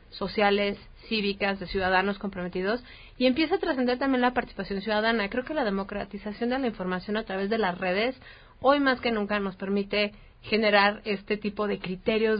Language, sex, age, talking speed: Spanish, female, 30-49, 175 wpm